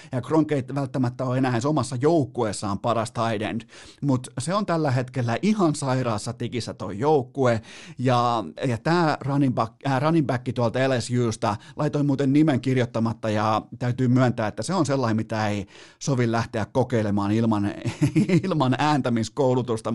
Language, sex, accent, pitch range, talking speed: Finnish, male, native, 110-140 Hz, 145 wpm